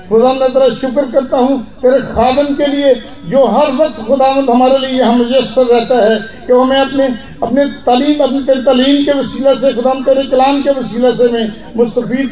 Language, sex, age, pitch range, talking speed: Hindi, male, 50-69, 230-270 Hz, 185 wpm